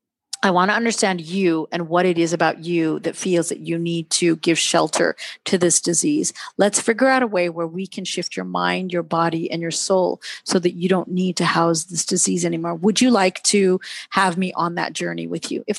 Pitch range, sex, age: 175-225 Hz, female, 40-59